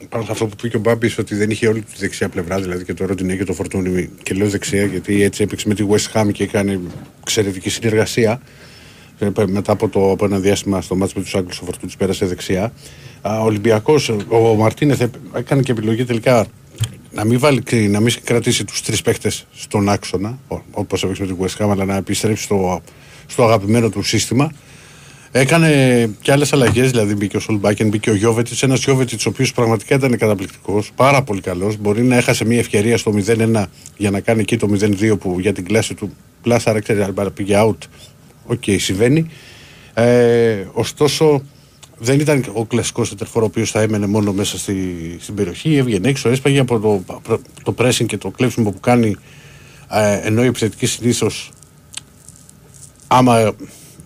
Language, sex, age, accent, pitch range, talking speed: Greek, male, 50-69, native, 100-120 Hz, 180 wpm